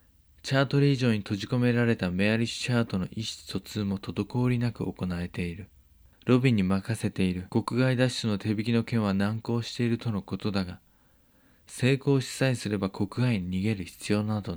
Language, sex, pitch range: Japanese, male, 95-125 Hz